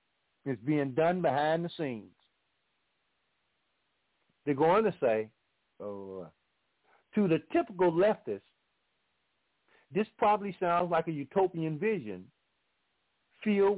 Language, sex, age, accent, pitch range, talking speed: English, male, 50-69, American, 145-200 Hz, 95 wpm